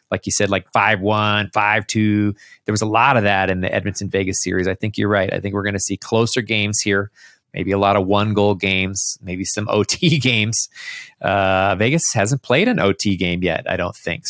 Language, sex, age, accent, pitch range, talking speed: English, male, 30-49, American, 95-120 Hz, 210 wpm